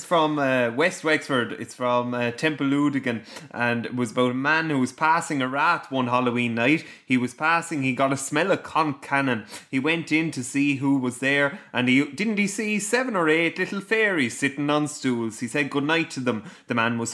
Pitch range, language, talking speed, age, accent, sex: 120-160 Hz, English, 215 wpm, 20-39, Irish, male